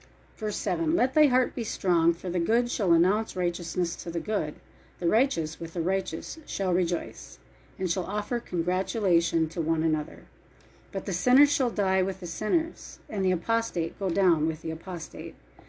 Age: 40-59